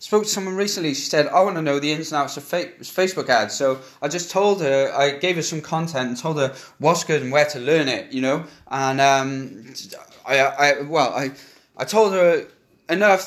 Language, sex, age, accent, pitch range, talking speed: English, male, 10-29, British, 145-185 Hz, 225 wpm